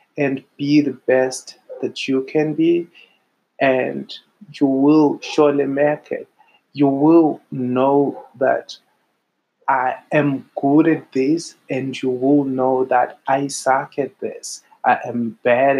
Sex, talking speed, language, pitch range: male, 135 wpm, English, 130-155 Hz